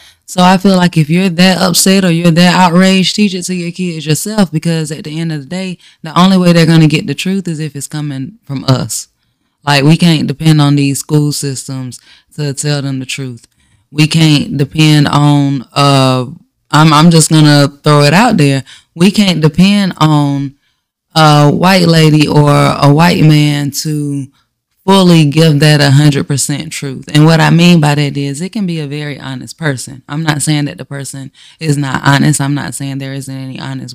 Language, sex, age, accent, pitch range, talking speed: English, female, 20-39, American, 140-170 Hz, 200 wpm